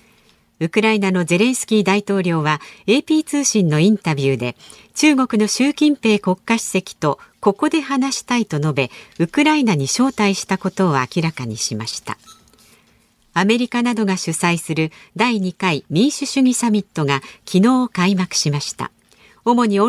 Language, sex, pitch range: Japanese, female, 165-235 Hz